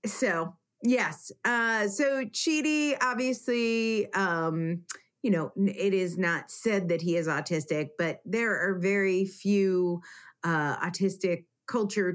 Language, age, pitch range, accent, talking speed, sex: English, 30-49, 170-210 Hz, American, 125 wpm, female